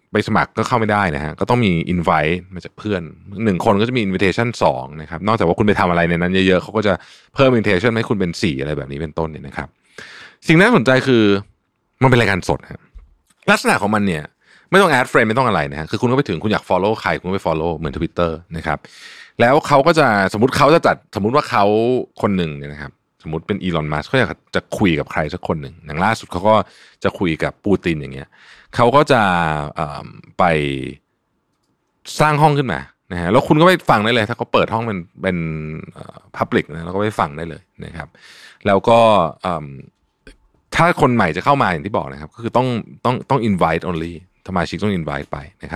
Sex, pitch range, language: male, 80-115 Hz, Thai